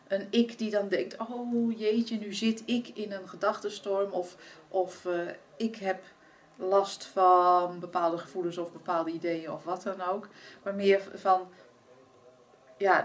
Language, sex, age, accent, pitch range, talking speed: Dutch, female, 40-59, Dutch, 165-200 Hz, 150 wpm